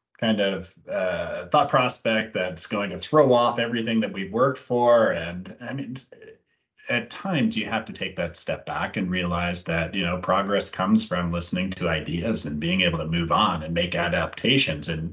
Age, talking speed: 30-49, 190 wpm